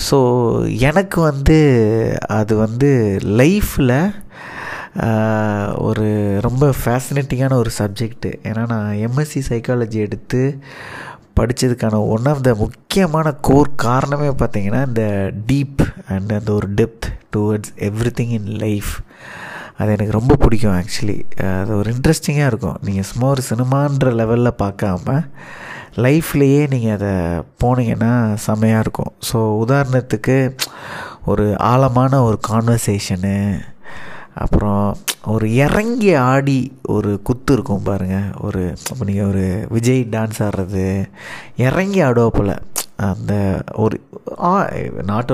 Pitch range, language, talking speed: 105-135 Hz, Tamil, 105 wpm